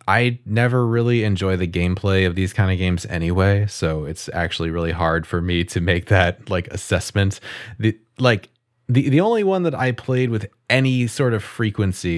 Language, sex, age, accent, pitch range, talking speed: English, male, 30-49, American, 90-115 Hz, 185 wpm